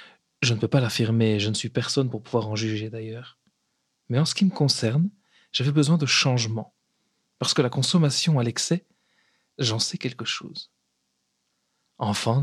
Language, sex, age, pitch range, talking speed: French, male, 40-59, 120-145 Hz, 170 wpm